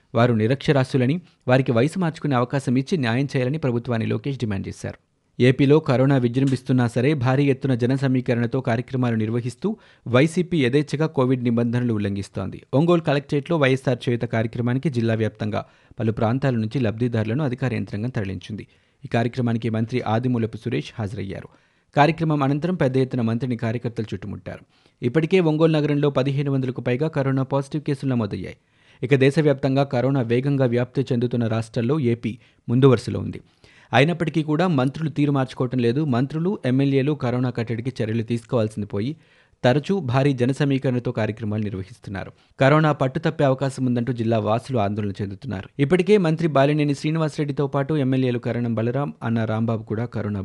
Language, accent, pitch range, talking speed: Telugu, native, 115-140 Hz, 130 wpm